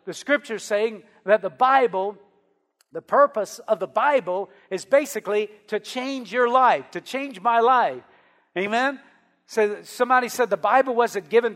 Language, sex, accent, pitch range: English, male, American, 210-260 Hz